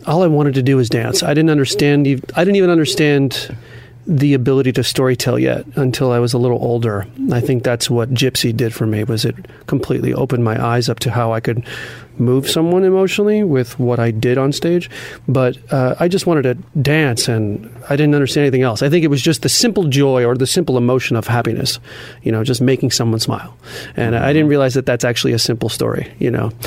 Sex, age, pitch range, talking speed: male, 40-59, 120-140 Hz, 220 wpm